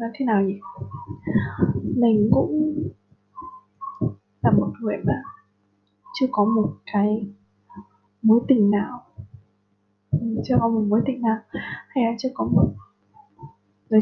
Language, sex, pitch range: Vietnamese, female, 205-265 Hz